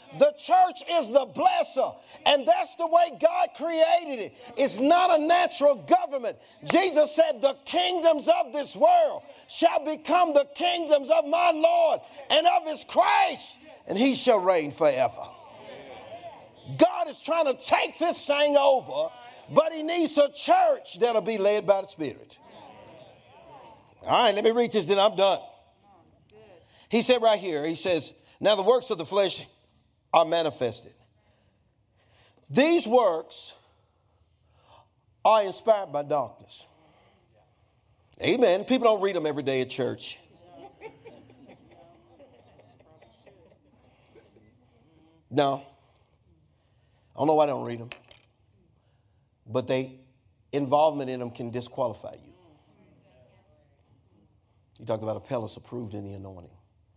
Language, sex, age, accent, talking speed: English, male, 50-69, American, 130 wpm